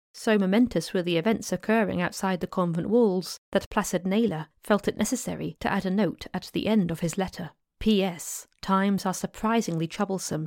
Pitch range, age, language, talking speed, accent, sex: 170-210 Hz, 30-49, English, 180 wpm, British, female